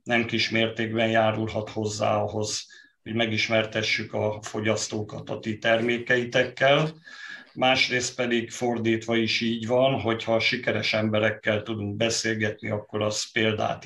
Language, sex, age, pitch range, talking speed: Hungarian, male, 50-69, 110-120 Hz, 115 wpm